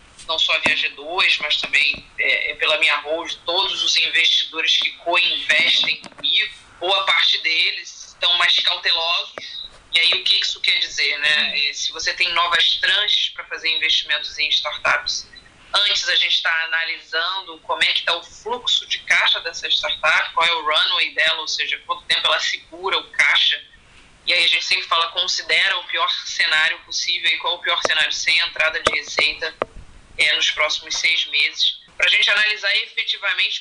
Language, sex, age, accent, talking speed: Portuguese, female, 20-39, Brazilian, 175 wpm